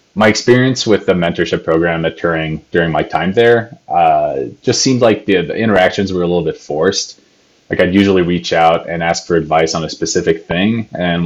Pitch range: 80-95 Hz